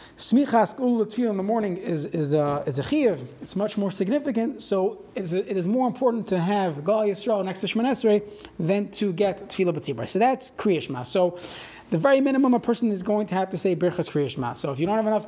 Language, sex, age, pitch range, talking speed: English, male, 30-49, 175-225 Hz, 215 wpm